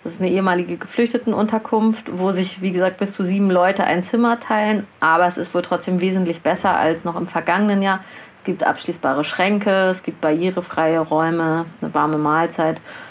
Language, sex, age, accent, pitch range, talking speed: German, female, 30-49, German, 175-210 Hz, 180 wpm